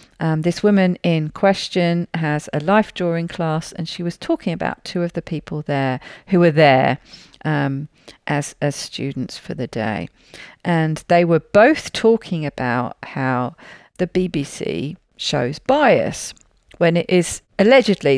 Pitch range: 155-215 Hz